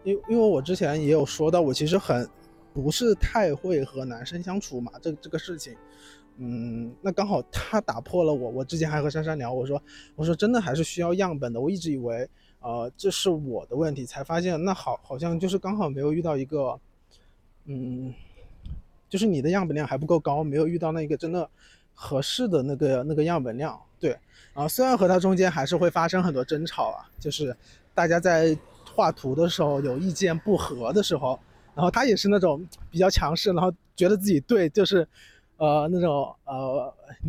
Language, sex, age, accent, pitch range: Chinese, male, 20-39, native, 140-190 Hz